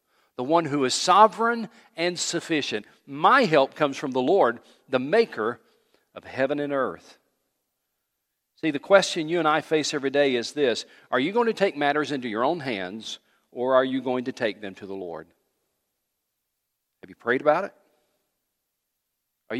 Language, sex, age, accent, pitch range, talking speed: English, male, 50-69, American, 110-155 Hz, 170 wpm